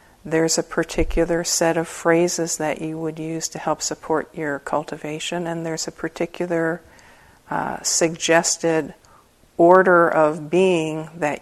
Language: English